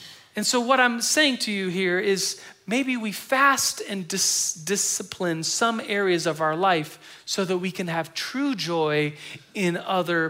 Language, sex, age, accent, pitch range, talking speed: English, male, 40-59, American, 150-200 Hz, 170 wpm